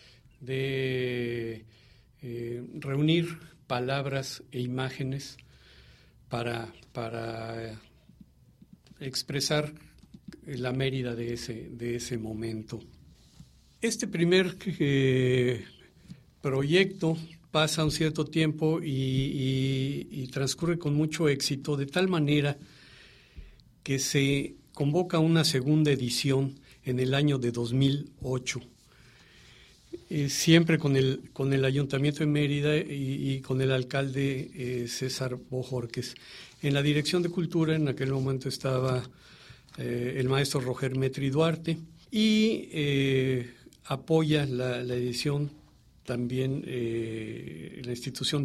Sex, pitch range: male, 125-150 Hz